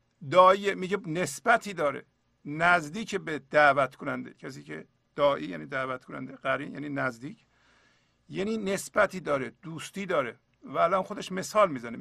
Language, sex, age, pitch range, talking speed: Persian, male, 50-69, 135-190 Hz, 135 wpm